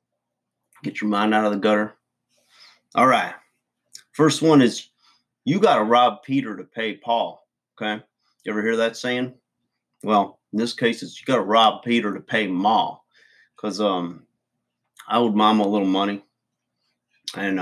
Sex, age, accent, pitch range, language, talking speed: male, 30-49, American, 100-120 Hz, English, 165 wpm